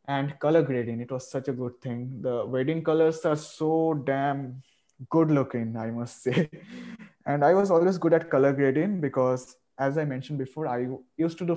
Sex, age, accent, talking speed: male, 20-39, native, 190 wpm